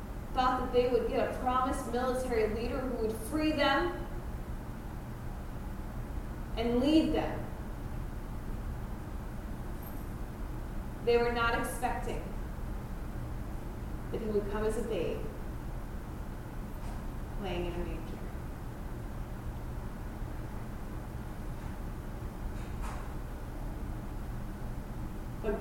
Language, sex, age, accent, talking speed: English, female, 30-49, American, 75 wpm